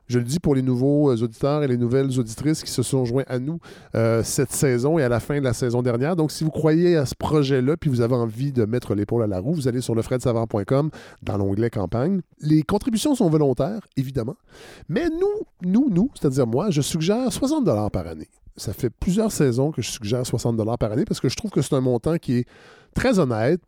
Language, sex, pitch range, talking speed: French, male, 125-165 Hz, 230 wpm